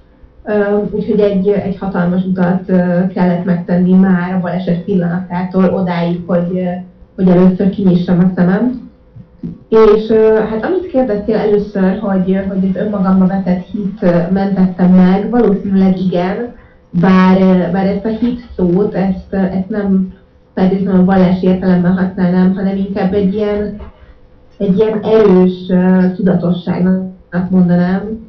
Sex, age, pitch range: female, 30-49, 180-195 Hz